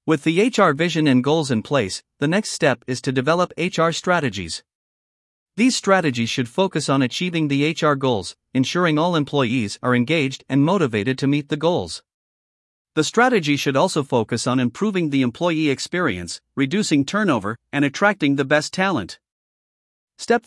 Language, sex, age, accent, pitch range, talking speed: English, male, 50-69, American, 130-175 Hz, 160 wpm